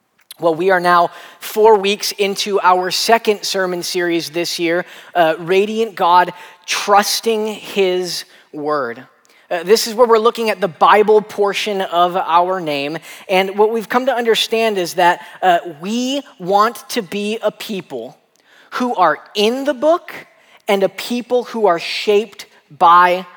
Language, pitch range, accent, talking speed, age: English, 165-210 Hz, American, 150 wpm, 20-39